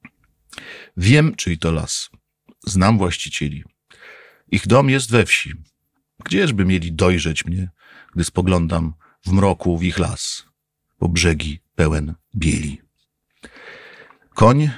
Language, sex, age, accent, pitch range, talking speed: Polish, male, 50-69, native, 80-115 Hz, 110 wpm